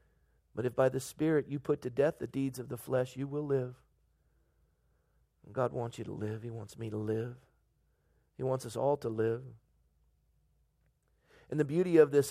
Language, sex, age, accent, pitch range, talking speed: English, male, 40-59, American, 125-145 Hz, 185 wpm